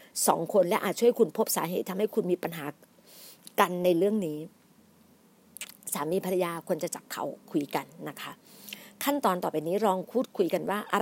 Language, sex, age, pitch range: Thai, female, 60-79, 180-230 Hz